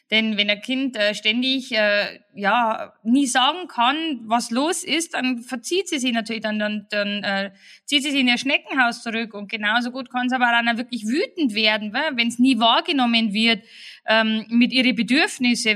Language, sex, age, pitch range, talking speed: German, female, 20-39, 215-275 Hz, 185 wpm